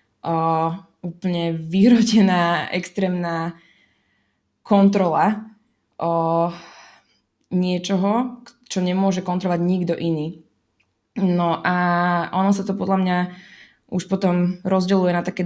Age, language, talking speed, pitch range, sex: 20-39, Slovak, 90 wpm, 165-190 Hz, female